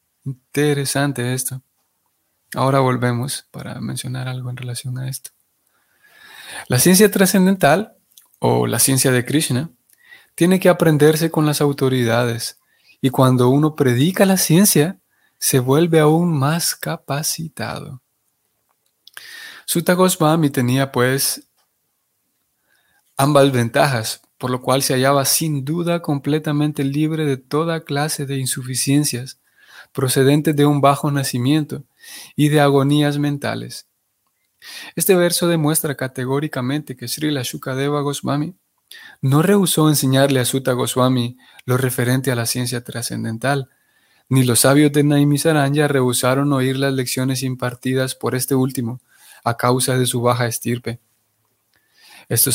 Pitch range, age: 130-150 Hz, 30-49